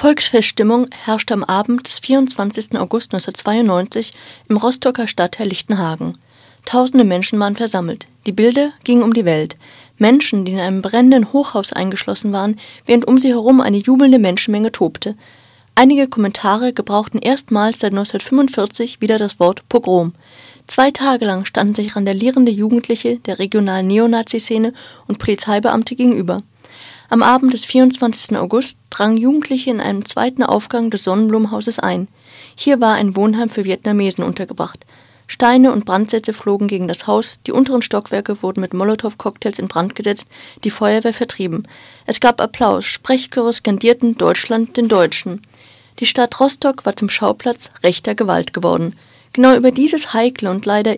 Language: German